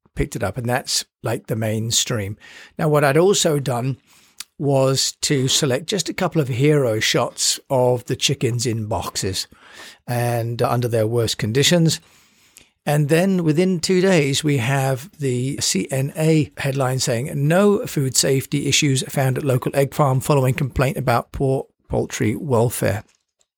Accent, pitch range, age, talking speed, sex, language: British, 125-155 Hz, 50-69, 150 wpm, male, English